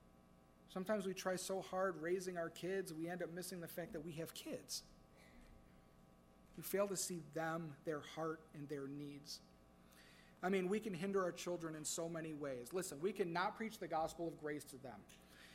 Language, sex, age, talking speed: English, male, 40-59, 190 wpm